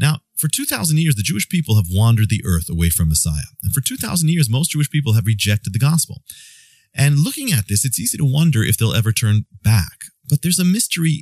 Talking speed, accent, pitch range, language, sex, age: 225 wpm, American, 105-145 Hz, English, male, 40-59